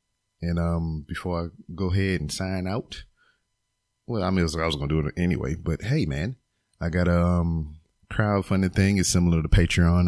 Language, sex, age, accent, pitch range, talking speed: English, male, 30-49, American, 85-100 Hz, 185 wpm